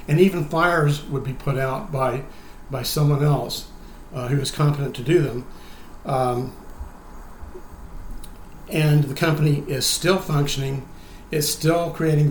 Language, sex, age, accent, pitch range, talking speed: English, male, 50-69, American, 130-160 Hz, 135 wpm